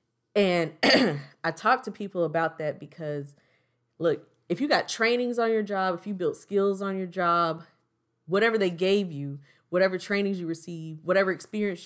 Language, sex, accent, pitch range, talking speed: English, female, American, 160-200 Hz, 165 wpm